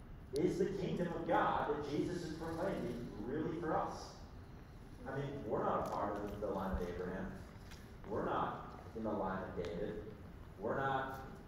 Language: English